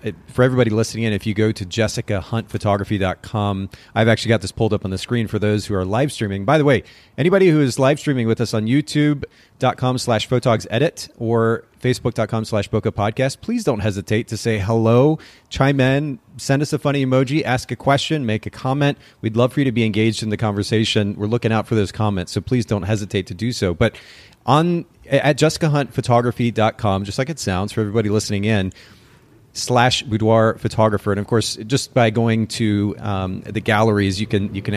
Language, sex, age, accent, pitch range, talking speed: English, male, 30-49, American, 105-130 Hz, 195 wpm